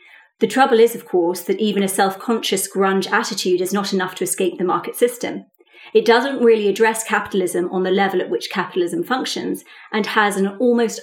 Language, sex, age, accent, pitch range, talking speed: English, female, 30-49, British, 190-230 Hz, 190 wpm